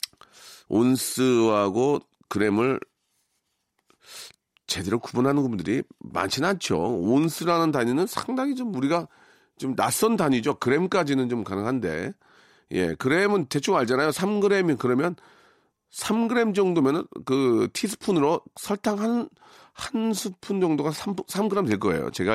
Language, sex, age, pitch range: Korean, male, 40-59, 130-195 Hz